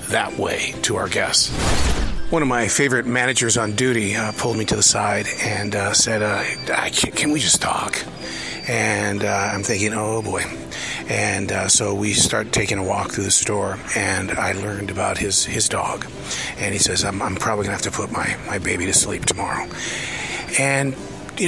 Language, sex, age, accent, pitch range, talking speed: English, male, 40-59, American, 100-120 Hz, 195 wpm